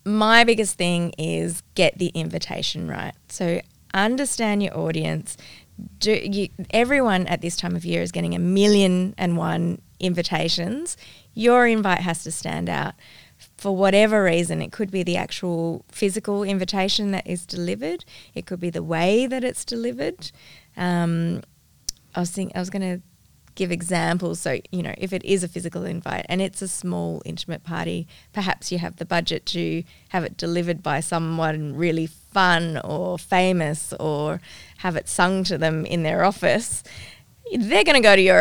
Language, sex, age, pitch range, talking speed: English, female, 20-39, 170-205 Hz, 170 wpm